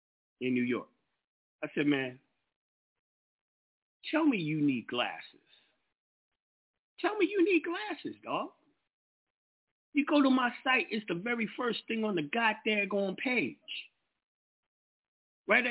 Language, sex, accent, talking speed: English, male, American, 120 wpm